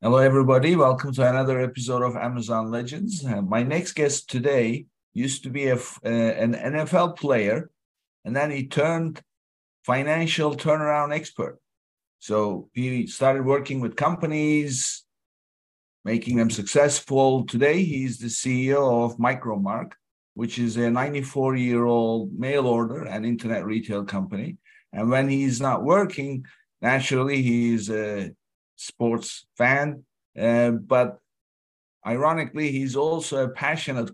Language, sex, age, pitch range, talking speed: English, male, 50-69, 120-145 Hz, 125 wpm